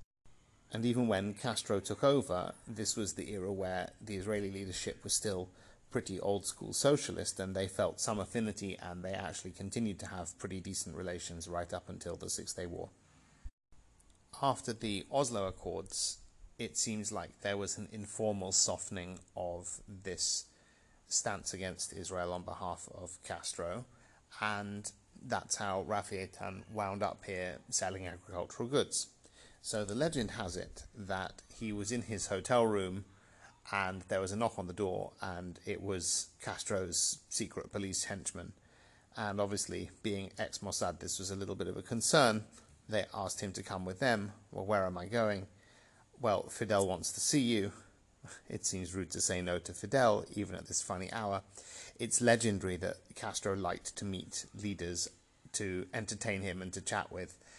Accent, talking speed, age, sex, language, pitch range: British, 160 wpm, 30-49, male, English, 90-110 Hz